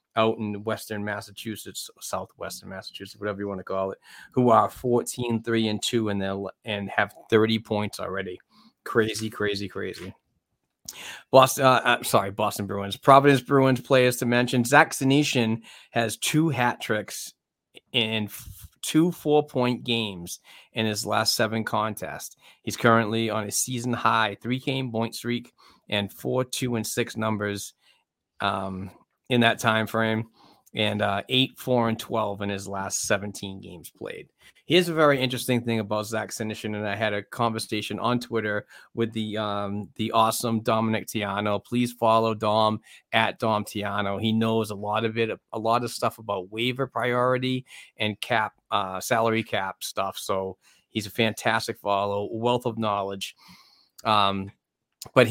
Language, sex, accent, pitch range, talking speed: English, male, American, 105-120 Hz, 155 wpm